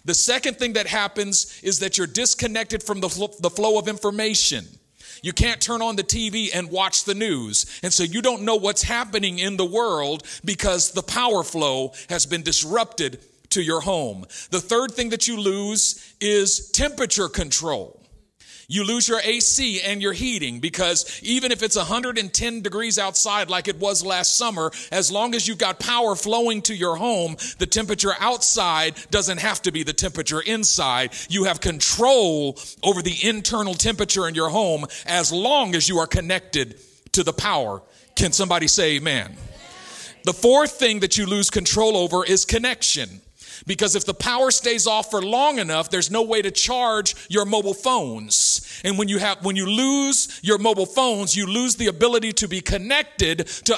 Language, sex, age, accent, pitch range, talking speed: English, male, 40-59, American, 185-230 Hz, 180 wpm